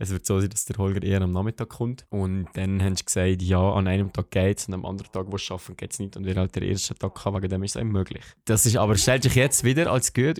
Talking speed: 310 wpm